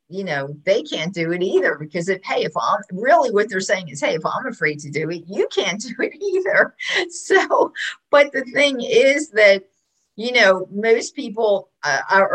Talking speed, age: 195 wpm, 50-69